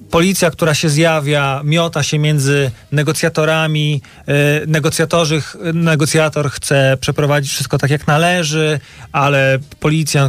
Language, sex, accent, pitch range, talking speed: Polish, male, native, 135-155 Hz, 100 wpm